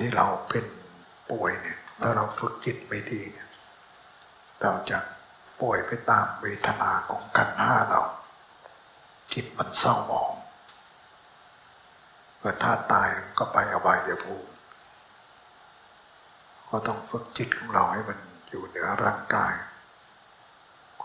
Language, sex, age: Thai, male, 60-79